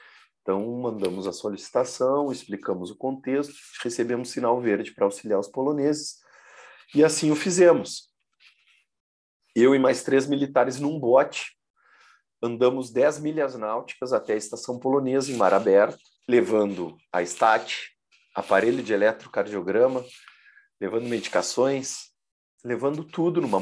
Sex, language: male, Portuguese